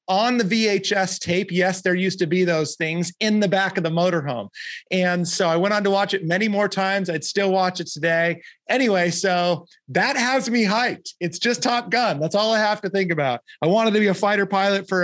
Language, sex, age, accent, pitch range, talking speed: English, male, 30-49, American, 170-210 Hz, 230 wpm